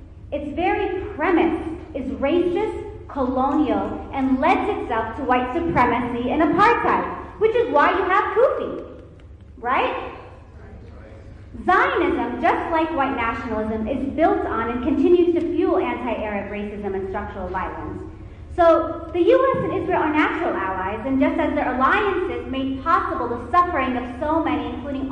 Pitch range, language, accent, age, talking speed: 225-345 Hz, English, American, 30-49, 140 wpm